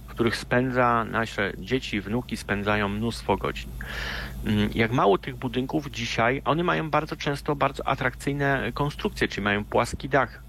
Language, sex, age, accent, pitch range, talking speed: Polish, male, 40-59, native, 100-125 Hz, 145 wpm